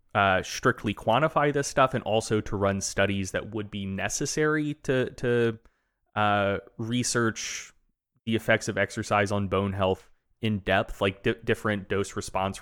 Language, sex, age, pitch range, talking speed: English, male, 20-39, 100-125 Hz, 150 wpm